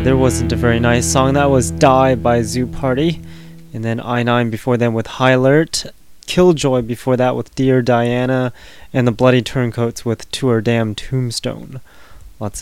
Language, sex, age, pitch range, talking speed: English, male, 20-39, 115-140 Hz, 170 wpm